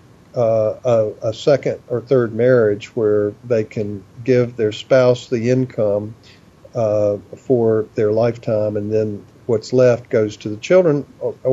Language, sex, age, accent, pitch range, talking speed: English, male, 50-69, American, 110-145 Hz, 145 wpm